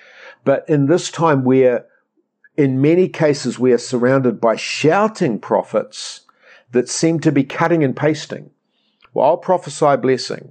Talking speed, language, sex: 150 wpm, English, male